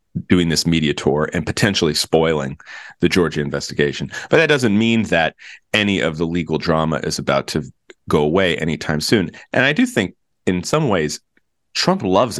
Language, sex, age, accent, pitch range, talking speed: English, male, 30-49, American, 80-105 Hz, 175 wpm